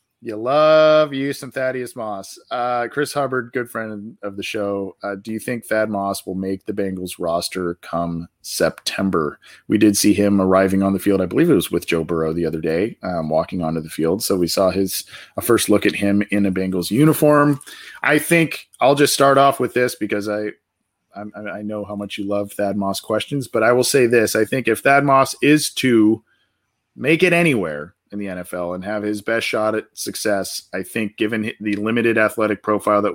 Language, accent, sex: English, American, male